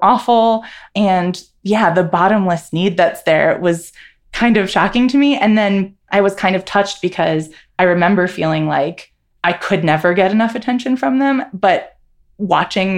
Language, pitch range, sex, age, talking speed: English, 170-220 Hz, female, 20-39, 165 wpm